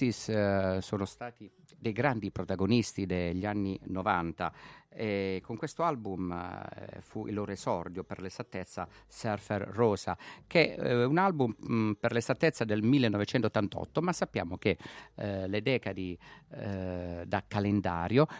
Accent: native